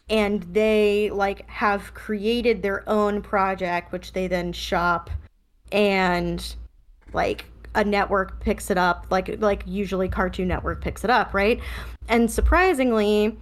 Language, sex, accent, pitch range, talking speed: English, female, American, 190-220 Hz, 135 wpm